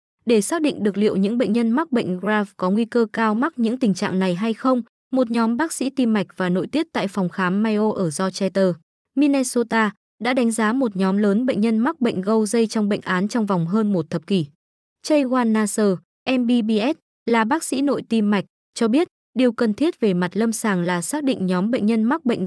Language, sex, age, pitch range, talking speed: Vietnamese, female, 20-39, 195-245 Hz, 225 wpm